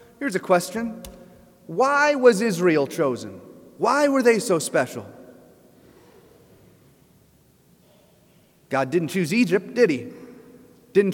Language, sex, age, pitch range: English, male, 30-49, 180-255 Hz